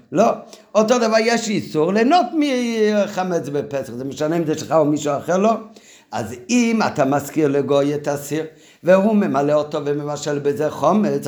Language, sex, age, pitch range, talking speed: Hebrew, male, 50-69, 150-225 Hz, 160 wpm